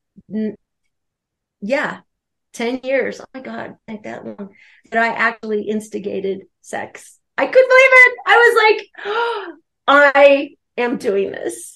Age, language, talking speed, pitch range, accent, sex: 40-59, English, 135 wpm, 210-255 Hz, American, female